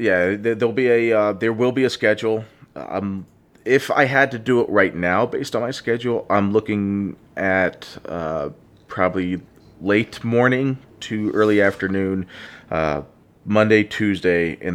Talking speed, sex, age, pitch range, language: 150 wpm, male, 30-49, 90-120 Hz, English